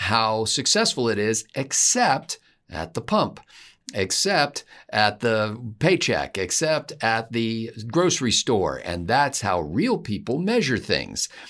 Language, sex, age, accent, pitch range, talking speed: English, male, 50-69, American, 105-135 Hz, 125 wpm